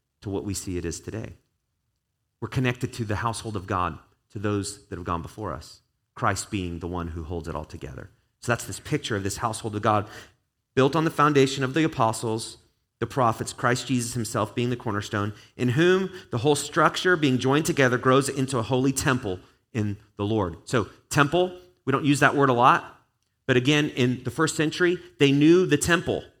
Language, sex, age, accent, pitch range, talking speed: English, male, 30-49, American, 110-150 Hz, 200 wpm